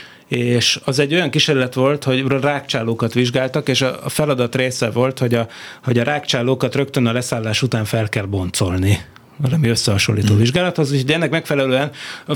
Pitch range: 120-140 Hz